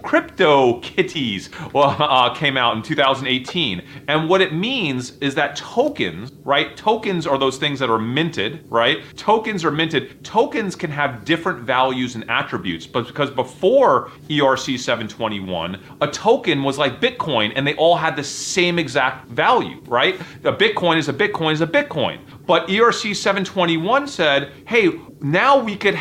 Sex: male